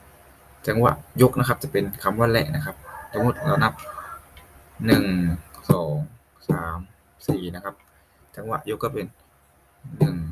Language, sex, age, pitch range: Thai, male, 20-39, 70-115 Hz